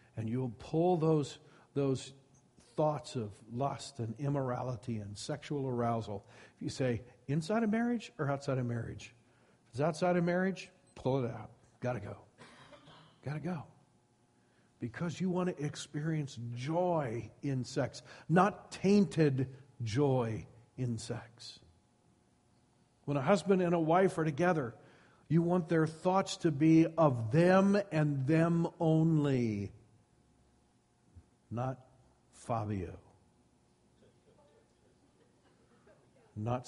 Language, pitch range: English, 115-160 Hz